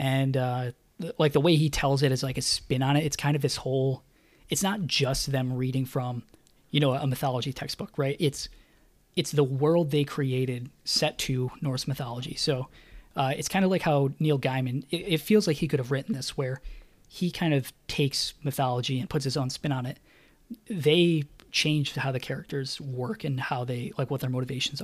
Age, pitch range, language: 20-39, 130-150 Hz, English